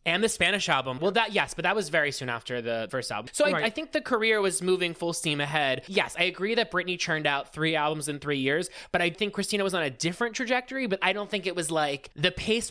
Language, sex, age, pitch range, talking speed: English, male, 20-39, 145-190 Hz, 270 wpm